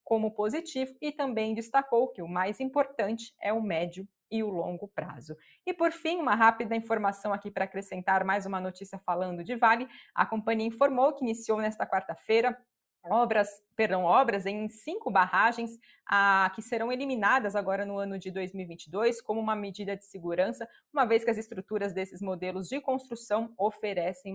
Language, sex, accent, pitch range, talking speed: Portuguese, female, Brazilian, 190-235 Hz, 165 wpm